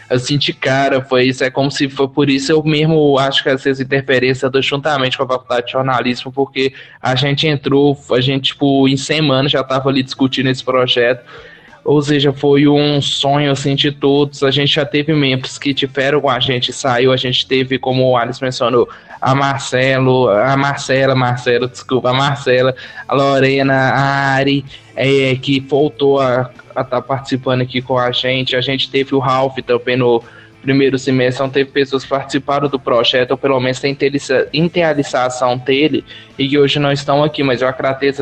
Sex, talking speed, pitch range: male, 190 wpm, 130-140 Hz